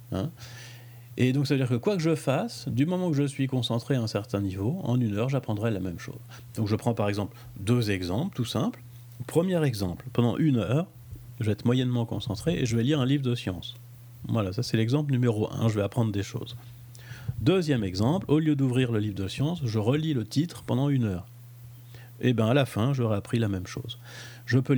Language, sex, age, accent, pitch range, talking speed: French, male, 40-59, French, 105-130 Hz, 230 wpm